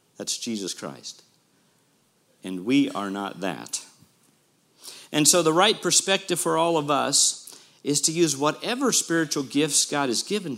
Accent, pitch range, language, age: American, 110-150 Hz, English, 50-69